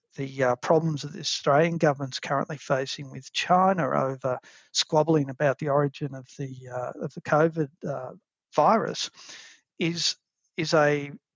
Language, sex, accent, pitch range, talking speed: English, male, Australian, 145-170 Hz, 130 wpm